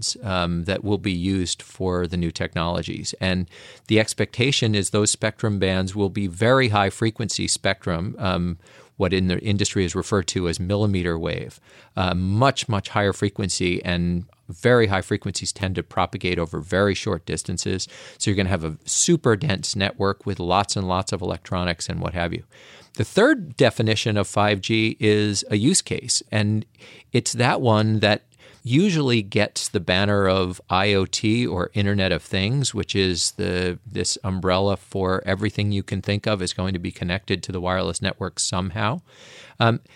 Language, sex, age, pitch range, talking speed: English, male, 40-59, 90-115 Hz, 170 wpm